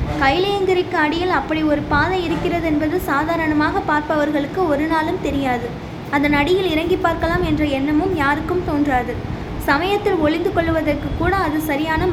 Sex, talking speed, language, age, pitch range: female, 130 wpm, Tamil, 20-39, 300-360 Hz